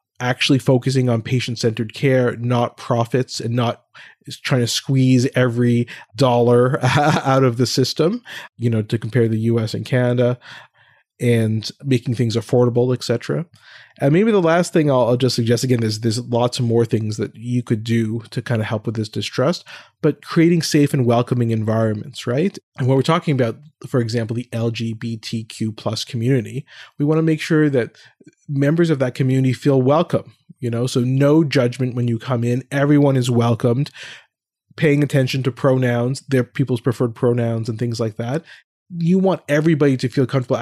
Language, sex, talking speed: English, male, 175 wpm